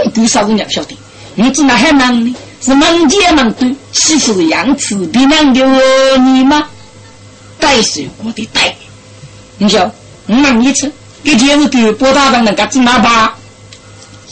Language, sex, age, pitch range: Chinese, female, 40-59, 200-280 Hz